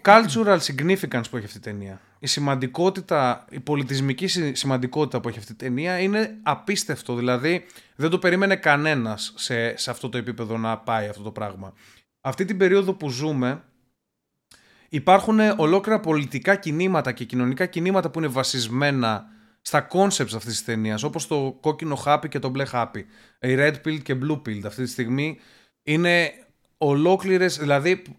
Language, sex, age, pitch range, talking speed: Greek, male, 20-39, 125-175 Hz, 160 wpm